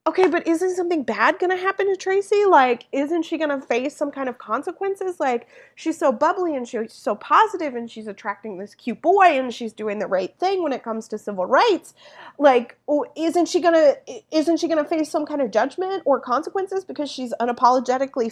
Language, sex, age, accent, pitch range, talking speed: English, female, 20-39, American, 220-315 Hz, 215 wpm